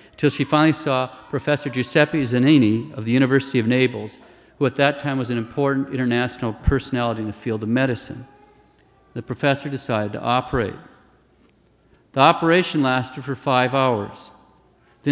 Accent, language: American, English